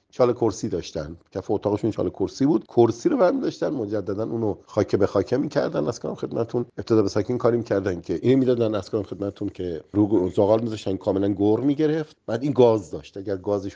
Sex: male